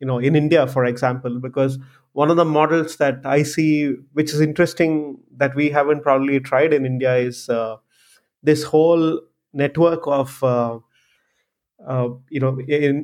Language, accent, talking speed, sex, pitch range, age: English, Indian, 160 wpm, male, 135-155 Hz, 30-49